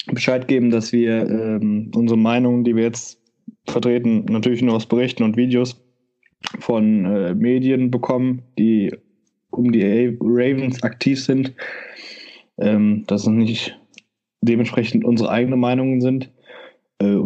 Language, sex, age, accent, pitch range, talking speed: German, male, 20-39, German, 110-125 Hz, 130 wpm